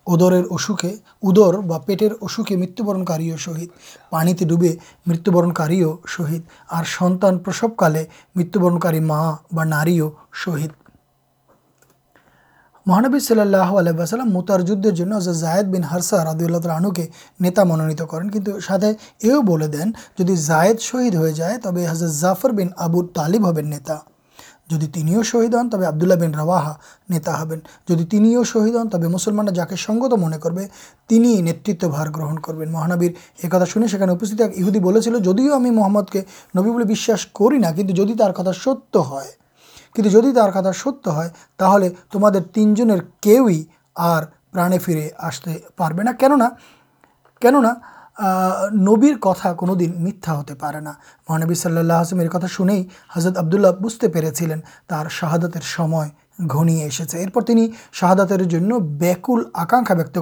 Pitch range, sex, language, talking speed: 165-210 Hz, male, Urdu, 115 wpm